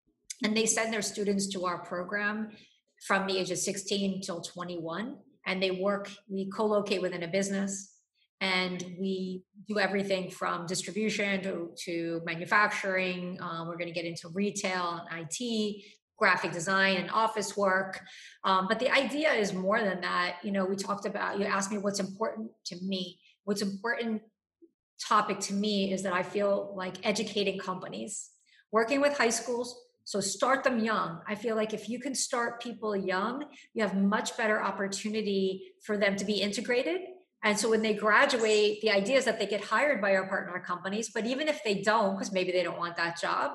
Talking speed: 185 wpm